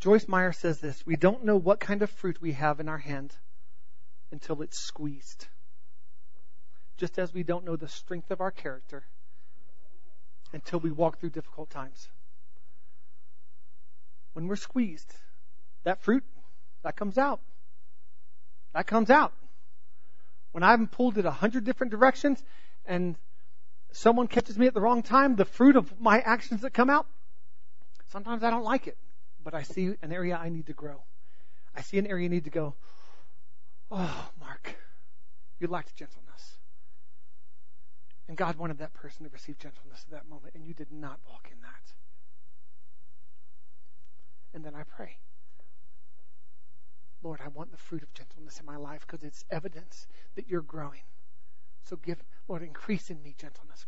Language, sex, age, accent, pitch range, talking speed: English, male, 40-59, American, 125-180 Hz, 160 wpm